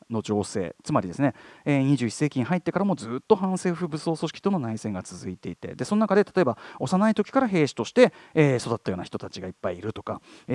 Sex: male